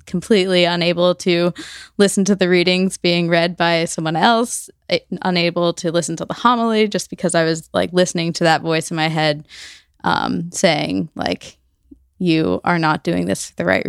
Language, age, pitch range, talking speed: English, 10-29, 165-195 Hz, 175 wpm